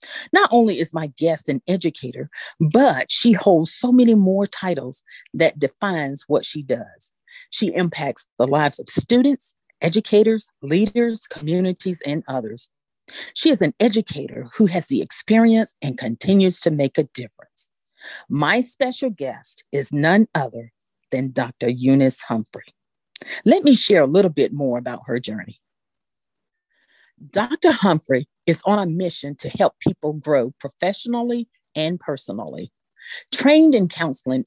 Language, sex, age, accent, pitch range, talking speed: English, female, 40-59, American, 145-215 Hz, 140 wpm